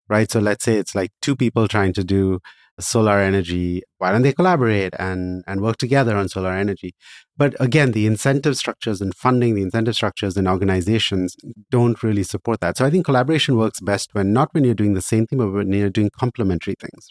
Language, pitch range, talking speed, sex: English, 95-120 Hz, 210 wpm, male